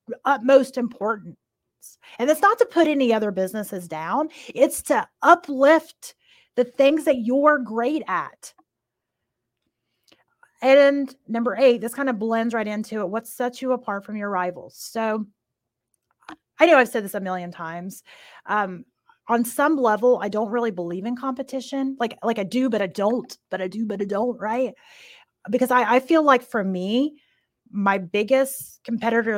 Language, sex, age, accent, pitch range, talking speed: English, female, 30-49, American, 200-270 Hz, 165 wpm